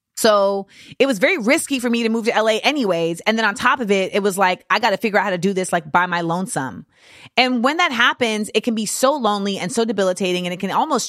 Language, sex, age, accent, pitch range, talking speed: English, female, 30-49, American, 180-230 Hz, 270 wpm